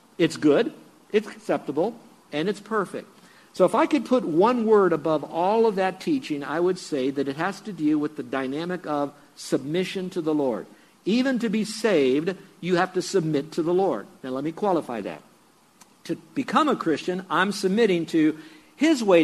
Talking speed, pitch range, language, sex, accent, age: 185 wpm, 145-190 Hz, English, male, American, 60-79